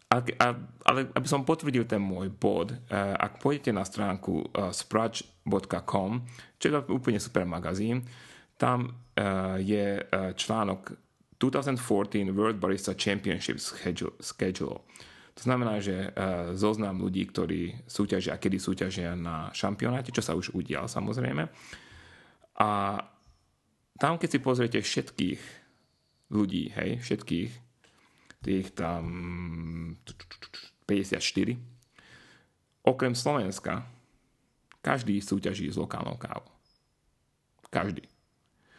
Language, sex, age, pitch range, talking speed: Slovak, male, 30-49, 95-120 Hz, 95 wpm